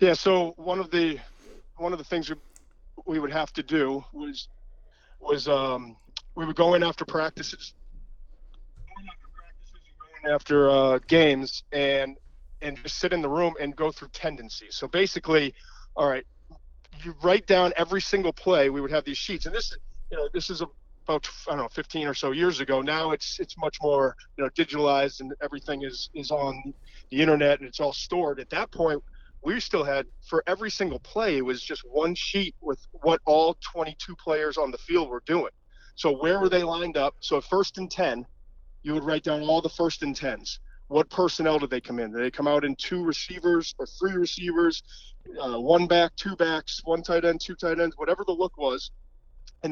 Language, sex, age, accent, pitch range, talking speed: English, male, 40-59, American, 140-175 Hz, 205 wpm